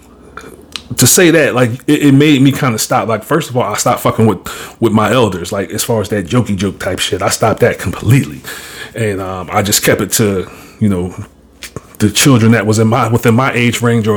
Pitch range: 110-125 Hz